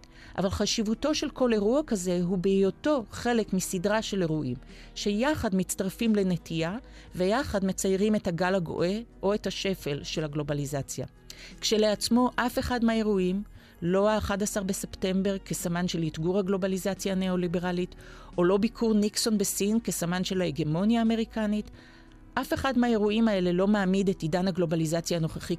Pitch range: 165-210 Hz